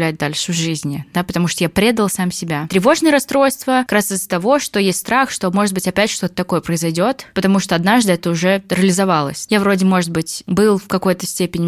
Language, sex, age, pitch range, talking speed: Russian, female, 20-39, 180-210 Hz, 205 wpm